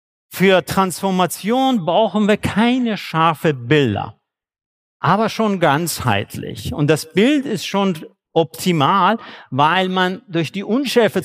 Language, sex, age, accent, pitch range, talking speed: German, male, 50-69, German, 145-210 Hz, 110 wpm